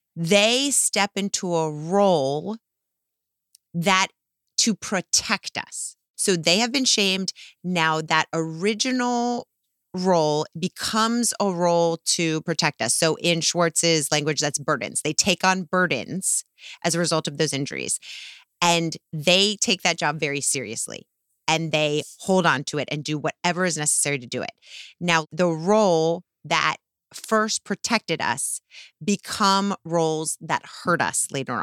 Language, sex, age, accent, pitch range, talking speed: English, female, 30-49, American, 160-205 Hz, 140 wpm